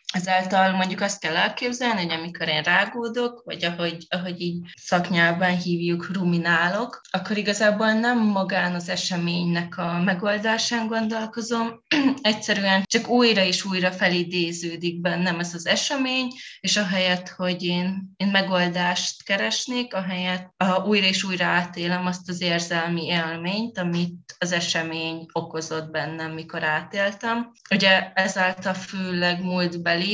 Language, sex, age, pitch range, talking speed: Hungarian, female, 20-39, 170-200 Hz, 125 wpm